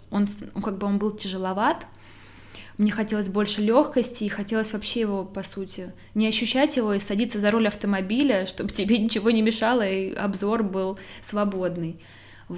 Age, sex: 20-39, female